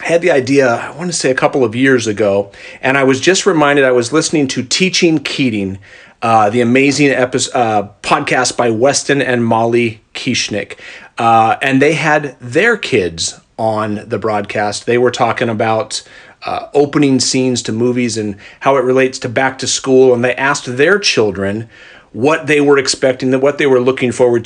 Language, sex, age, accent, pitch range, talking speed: English, male, 40-59, American, 115-140 Hz, 185 wpm